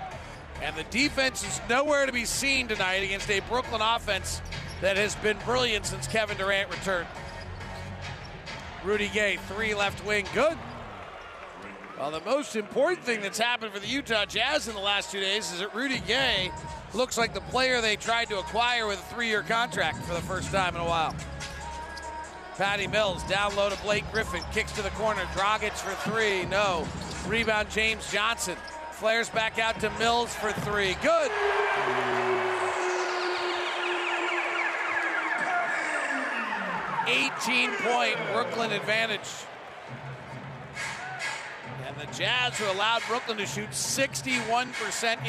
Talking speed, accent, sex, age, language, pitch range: 140 wpm, American, male, 40-59, English, 195-235 Hz